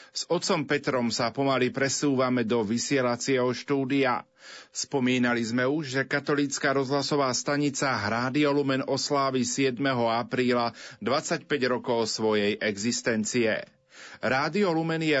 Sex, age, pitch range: male, 40-59, 125-150 Hz